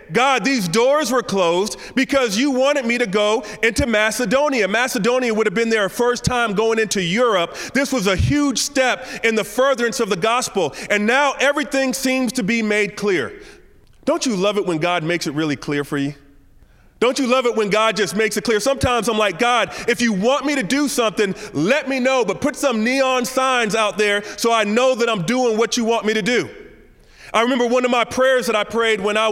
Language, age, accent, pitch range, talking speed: English, 30-49, American, 210-255 Hz, 220 wpm